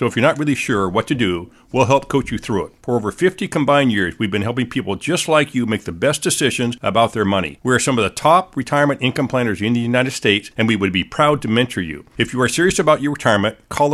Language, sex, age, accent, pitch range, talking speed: English, male, 50-69, American, 115-145 Hz, 265 wpm